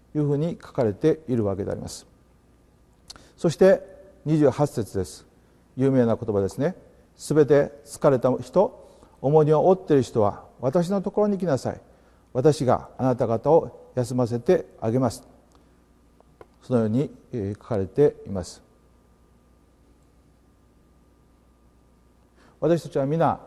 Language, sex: Japanese, male